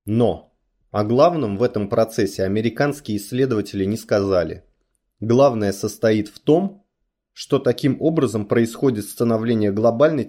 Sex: male